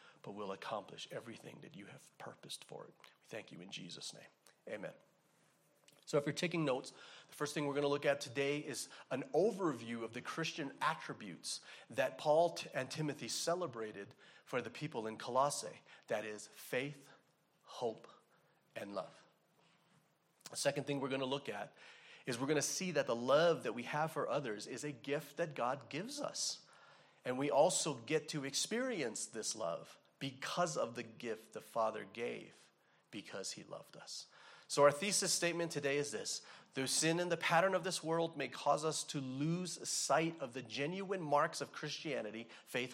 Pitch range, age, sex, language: 135-165 Hz, 40-59, male, English